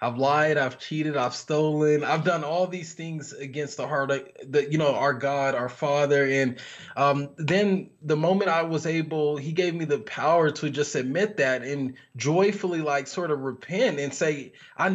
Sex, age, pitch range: male, 20-39, 145-175 Hz